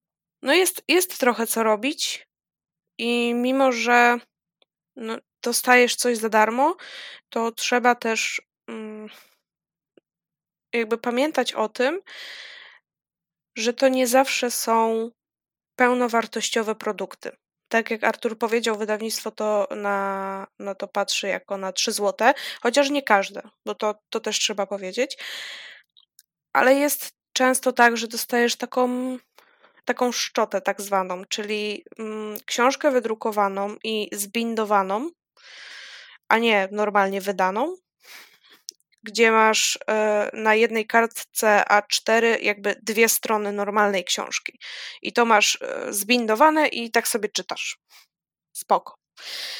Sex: female